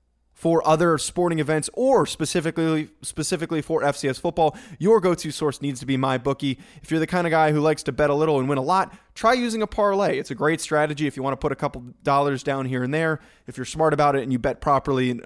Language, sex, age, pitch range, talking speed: English, male, 20-39, 130-170 Hz, 250 wpm